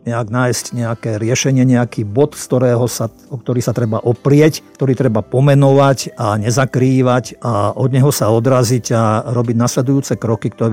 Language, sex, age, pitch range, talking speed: Slovak, male, 50-69, 120-145 Hz, 155 wpm